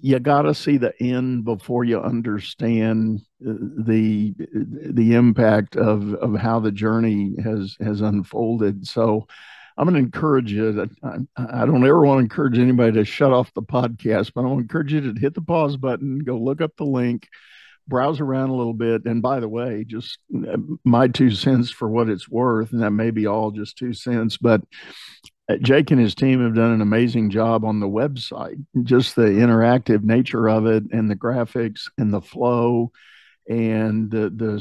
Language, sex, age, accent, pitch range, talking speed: English, male, 50-69, American, 110-125 Hz, 180 wpm